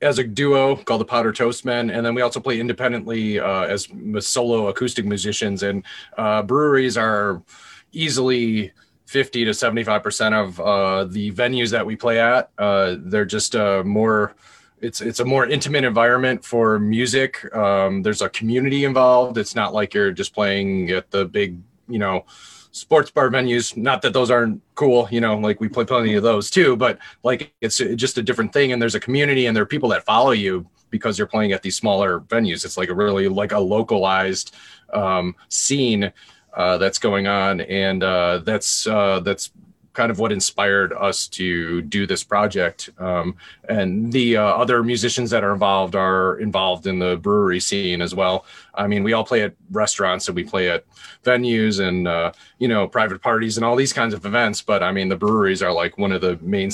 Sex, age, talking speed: male, 30-49, 195 wpm